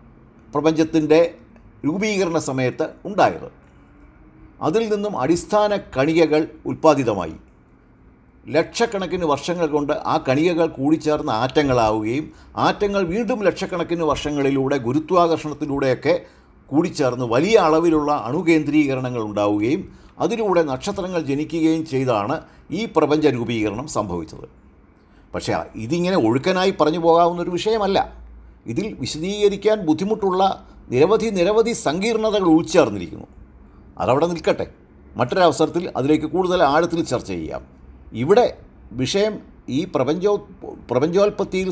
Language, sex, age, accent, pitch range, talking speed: Malayalam, male, 50-69, native, 125-180 Hz, 85 wpm